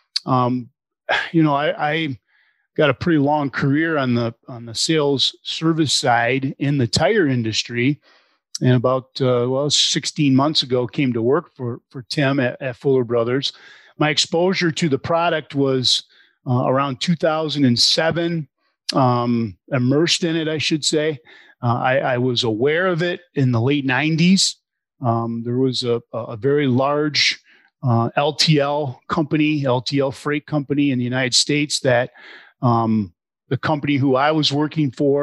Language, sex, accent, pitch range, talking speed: English, male, American, 125-155 Hz, 155 wpm